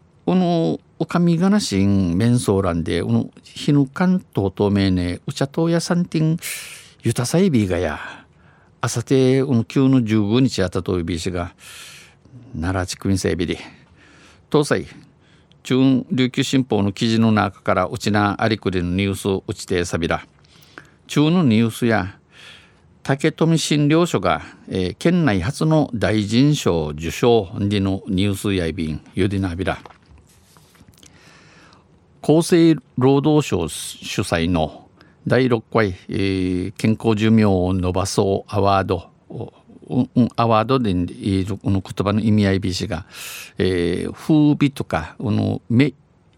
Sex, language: male, Japanese